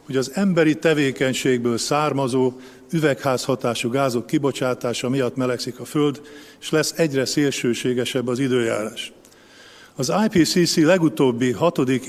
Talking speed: 110 wpm